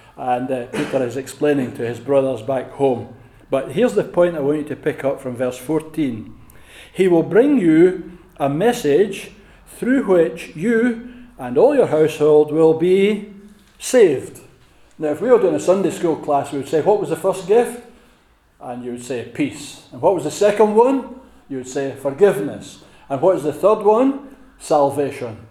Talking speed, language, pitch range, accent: 185 wpm, English, 125-190 Hz, British